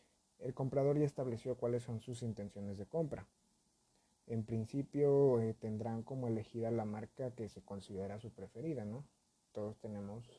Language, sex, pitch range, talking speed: Spanish, male, 110-140 Hz, 150 wpm